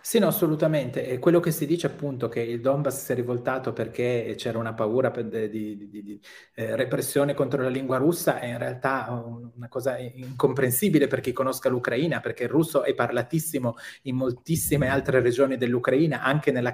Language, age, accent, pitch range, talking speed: Italian, 30-49, native, 120-150 Hz, 185 wpm